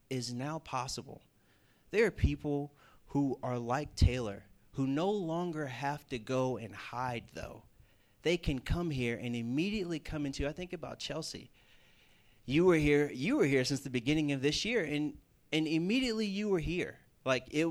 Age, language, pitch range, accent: 30-49, English, 110-150 Hz, American